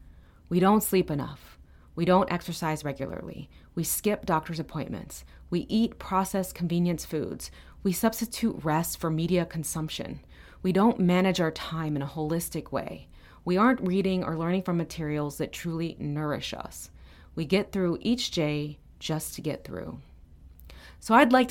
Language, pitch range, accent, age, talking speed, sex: English, 130-195 Hz, American, 30-49, 155 wpm, female